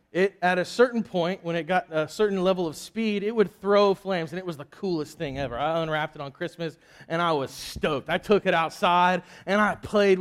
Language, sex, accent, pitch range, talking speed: English, male, American, 145-210 Hz, 235 wpm